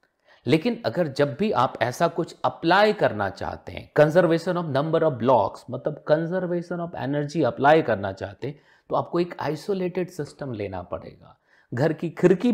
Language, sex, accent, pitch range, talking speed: Hindi, male, native, 135-180 Hz, 165 wpm